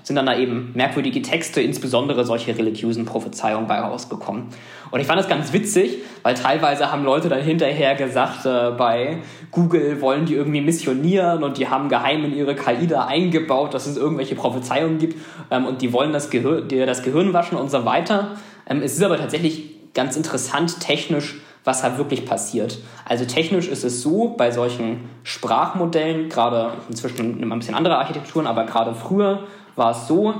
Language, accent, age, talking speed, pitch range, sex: German, German, 20-39, 175 wpm, 120-165 Hz, male